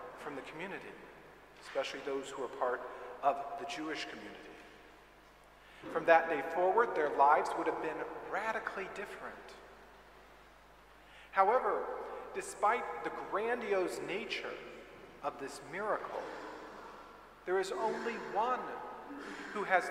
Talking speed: 110 wpm